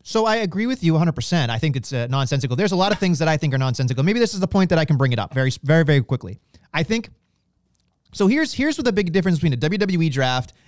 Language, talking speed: English, 275 wpm